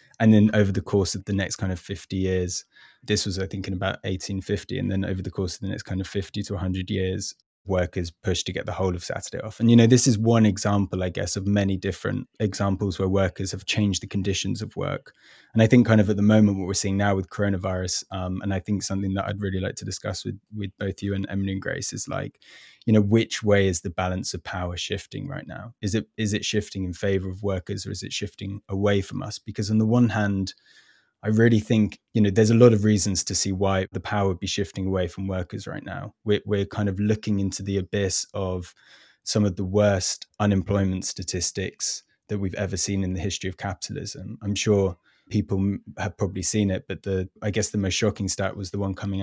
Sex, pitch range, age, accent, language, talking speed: male, 95-105 Hz, 20-39, British, English, 240 wpm